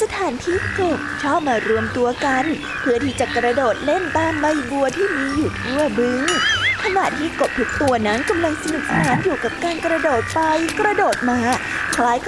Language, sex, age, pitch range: Thai, female, 20-39, 250-325 Hz